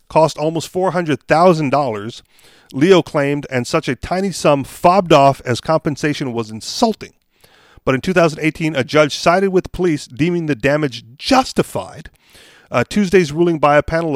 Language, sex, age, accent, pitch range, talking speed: English, male, 40-59, American, 130-180 Hz, 145 wpm